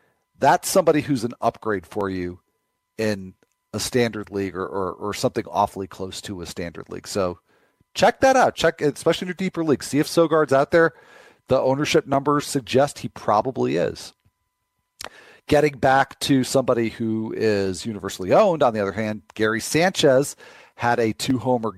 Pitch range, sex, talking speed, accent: 95-125 Hz, male, 165 wpm, American